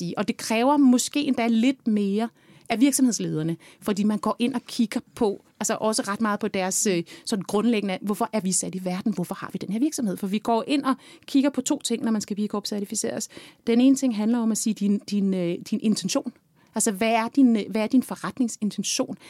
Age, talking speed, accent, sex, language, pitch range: 30-49, 215 wpm, native, female, Danish, 195-245 Hz